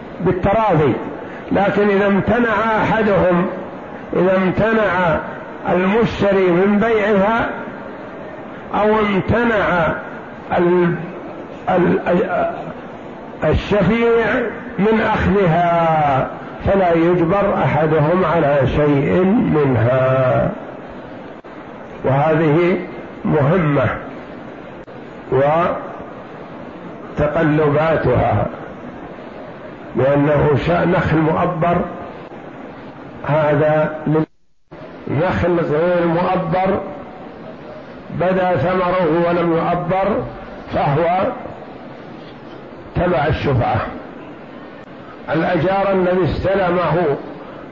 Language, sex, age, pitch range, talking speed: Arabic, male, 50-69, 160-195 Hz, 55 wpm